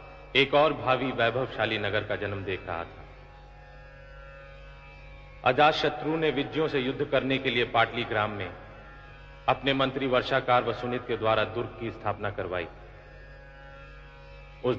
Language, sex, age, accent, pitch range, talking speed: Hindi, male, 50-69, native, 115-140 Hz, 125 wpm